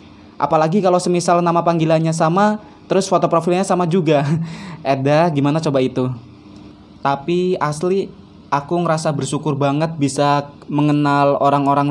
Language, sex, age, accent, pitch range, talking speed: Indonesian, male, 20-39, native, 135-160 Hz, 120 wpm